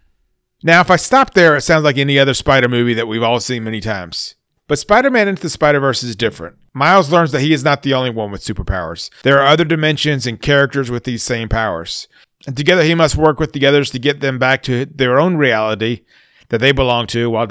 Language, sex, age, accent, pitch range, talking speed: English, male, 40-59, American, 120-150 Hz, 230 wpm